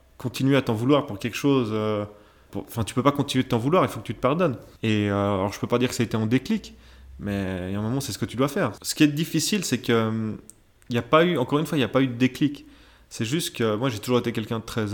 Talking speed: 325 wpm